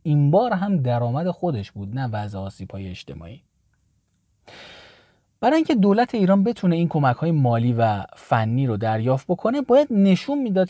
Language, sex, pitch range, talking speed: Persian, male, 115-185 Hz, 145 wpm